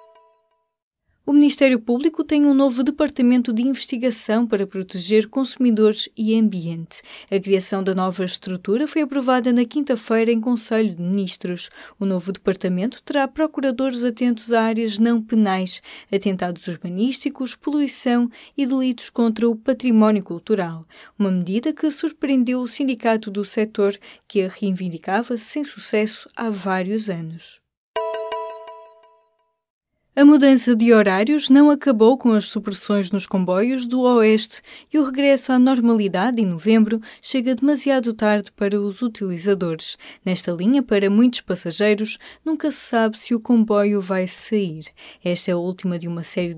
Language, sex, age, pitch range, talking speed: Portuguese, female, 20-39, 185-250 Hz, 140 wpm